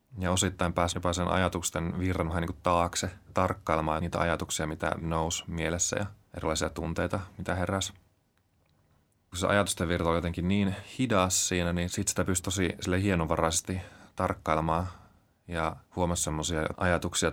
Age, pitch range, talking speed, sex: 30-49, 85-95 Hz, 135 wpm, male